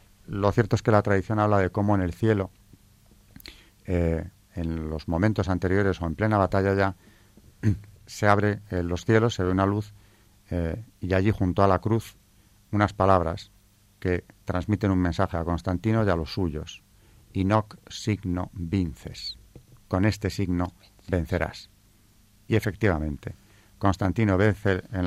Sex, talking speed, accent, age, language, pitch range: male, 145 wpm, Spanish, 40-59, Spanish, 90-105 Hz